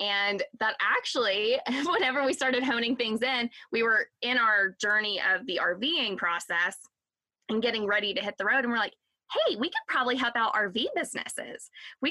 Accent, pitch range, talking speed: American, 210-260 Hz, 185 wpm